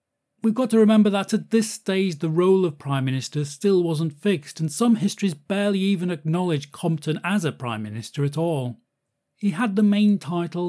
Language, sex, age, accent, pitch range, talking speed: English, male, 40-59, British, 135-175 Hz, 190 wpm